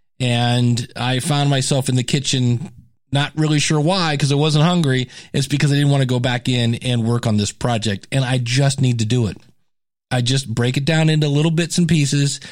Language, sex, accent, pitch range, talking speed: English, male, American, 125-160 Hz, 220 wpm